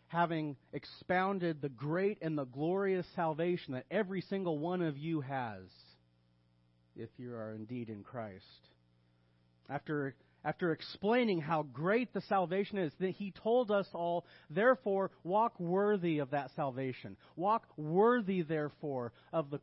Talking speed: 140 wpm